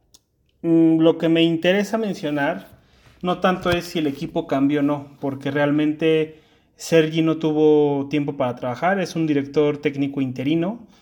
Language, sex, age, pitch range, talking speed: Spanish, male, 30-49, 140-170 Hz, 145 wpm